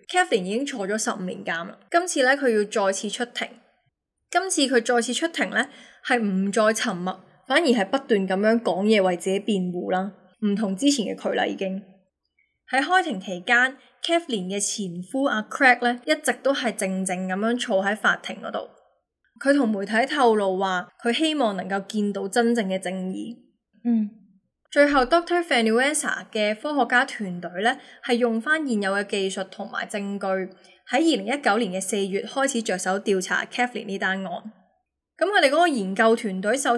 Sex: female